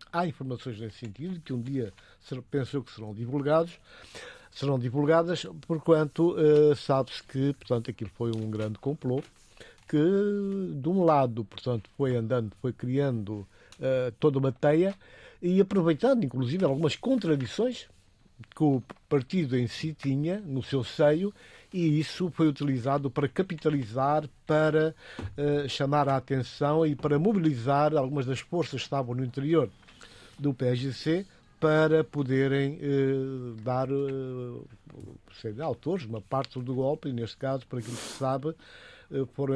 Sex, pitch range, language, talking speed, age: male, 125-160 Hz, Portuguese, 145 wpm, 60-79